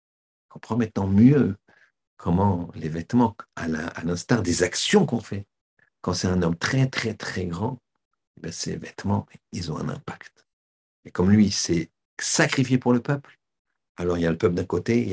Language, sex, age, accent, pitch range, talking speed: French, male, 50-69, French, 85-110 Hz, 185 wpm